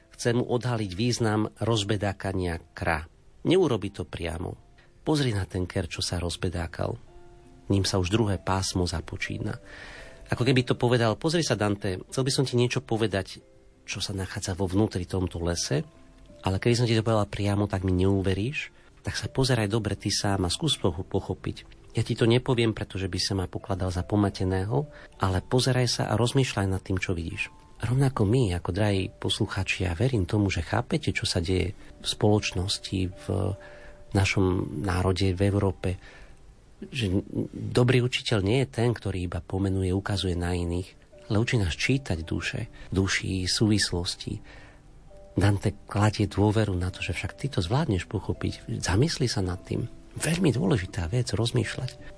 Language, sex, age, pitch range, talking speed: Slovak, male, 40-59, 95-120 Hz, 160 wpm